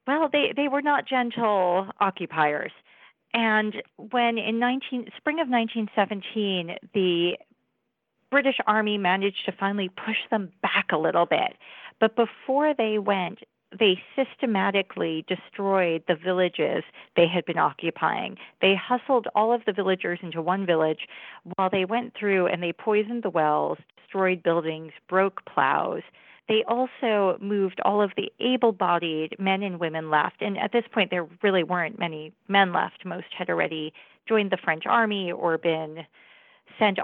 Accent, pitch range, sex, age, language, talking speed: American, 175-225 Hz, female, 40-59, English, 145 wpm